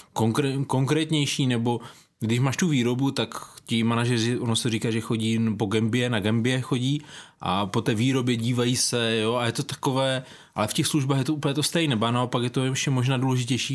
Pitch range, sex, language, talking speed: 115-135 Hz, male, Czech, 205 wpm